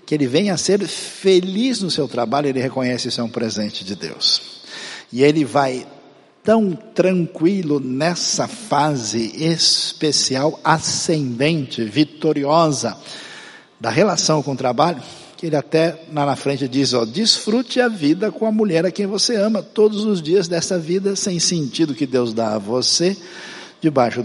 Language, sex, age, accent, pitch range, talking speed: Portuguese, male, 60-79, Brazilian, 135-195 Hz, 160 wpm